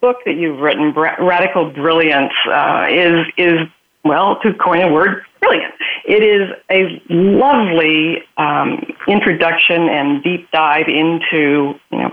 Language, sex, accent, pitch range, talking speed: English, female, American, 155-180 Hz, 130 wpm